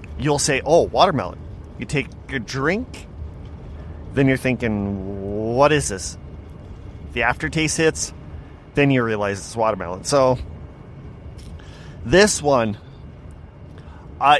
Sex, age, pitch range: male, 30-49, 90-140 Hz